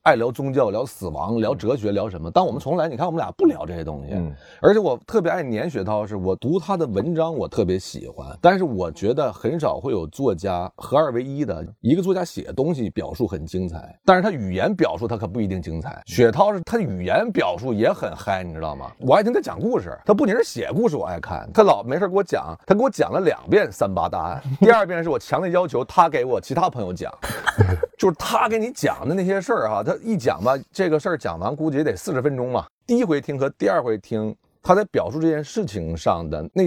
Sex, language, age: male, Chinese, 30-49